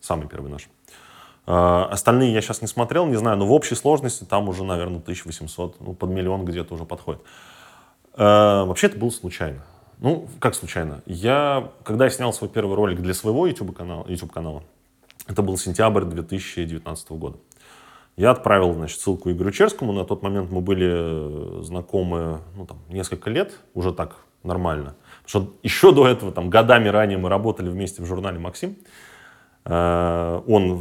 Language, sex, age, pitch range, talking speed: Russian, male, 20-39, 85-115 Hz, 160 wpm